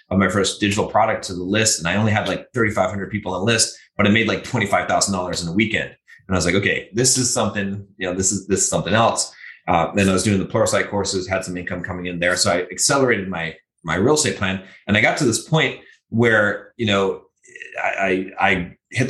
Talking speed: 245 wpm